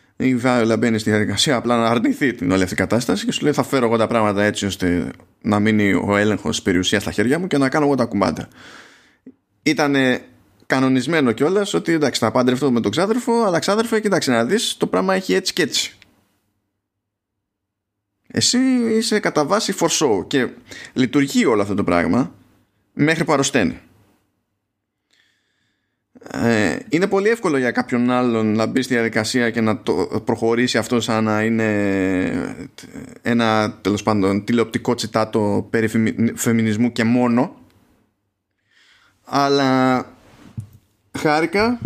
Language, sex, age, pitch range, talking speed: Greek, male, 20-39, 105-135 Hz, 145 wpm